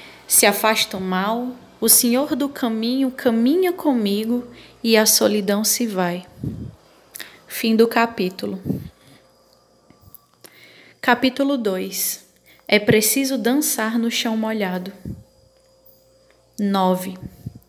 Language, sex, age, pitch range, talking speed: Portuguese, female, 10-29, 200-245 Hz, 90 wpm